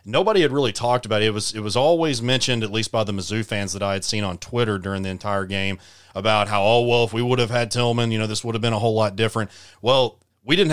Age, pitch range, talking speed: 30-49, 100-120 Hz, 280 wpm